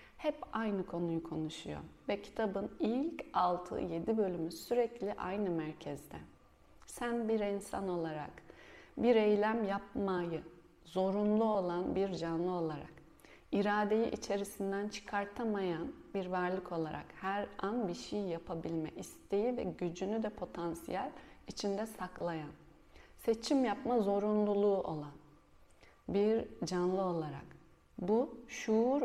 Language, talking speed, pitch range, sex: Turkish, 105 wpm, 170-220 Hz, female